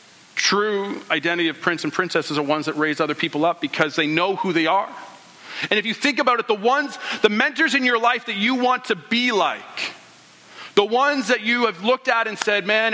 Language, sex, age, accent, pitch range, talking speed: English, male, 40-59, American, 180-230 Hz, 225 wpm